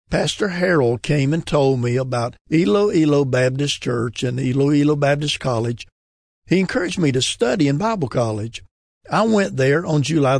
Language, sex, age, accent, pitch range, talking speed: English, male, 60-79, American, 125-165 Hz, 165 wpm